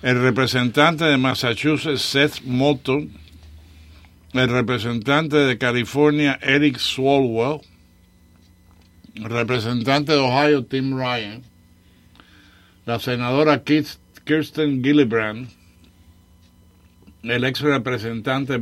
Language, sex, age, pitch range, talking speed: English, male, 60-79, 90-140 Hz, 80 wpm